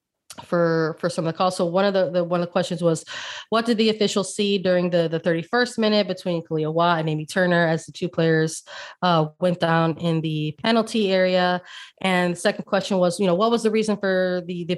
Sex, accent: female, American